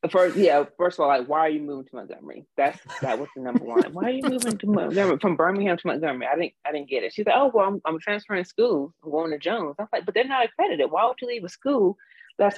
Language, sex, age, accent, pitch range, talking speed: English, female, 30-49, American, 145-230 Hz, 280 wpm